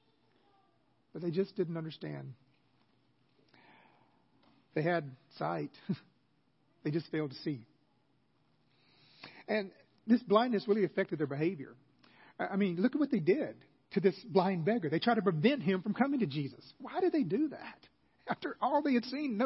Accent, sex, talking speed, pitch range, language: American, male, 155 wpm, 155-220 Hz, English